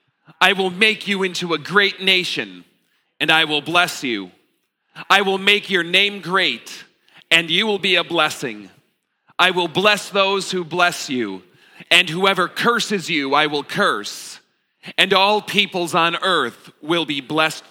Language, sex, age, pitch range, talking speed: English, male, 40-59, 135-175 Hz, 160 wpm